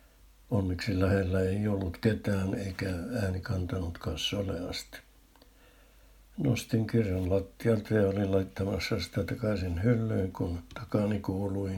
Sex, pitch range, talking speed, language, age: male, 95-115 Hz, 105 wpm, Finnish, 60-79